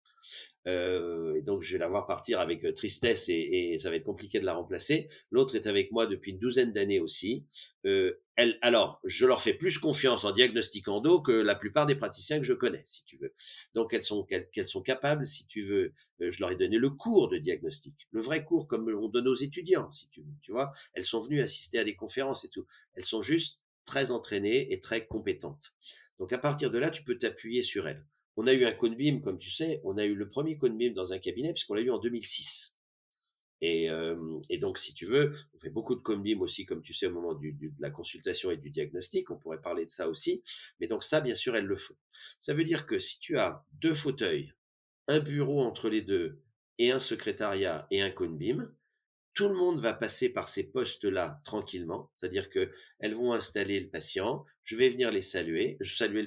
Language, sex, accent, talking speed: French, male, French, 230 wpm